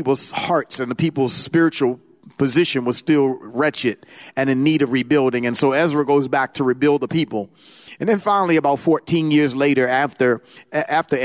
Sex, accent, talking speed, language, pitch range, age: male, American, 175 wpm, English, 125-150 Hz, 40-59